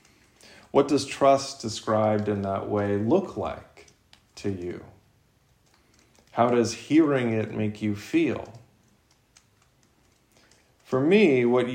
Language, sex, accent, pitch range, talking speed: English, male, American, 110-140 Hz, 105 wpm